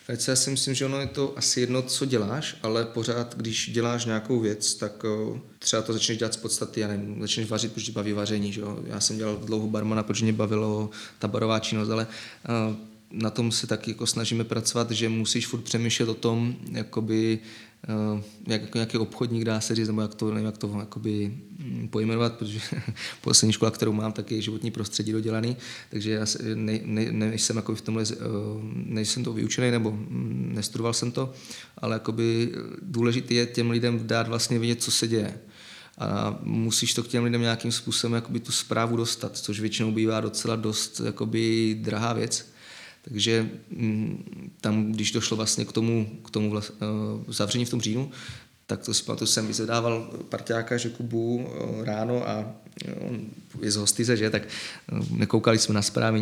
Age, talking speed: 20-39, 180 wpm